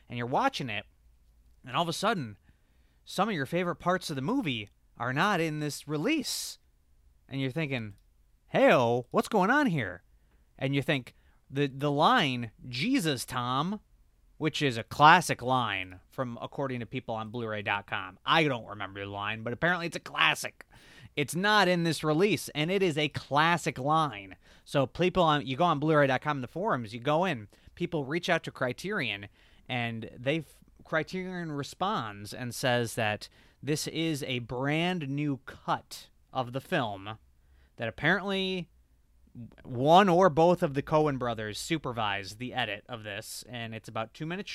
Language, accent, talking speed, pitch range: English, American, 165 wpm, 110-155 Hz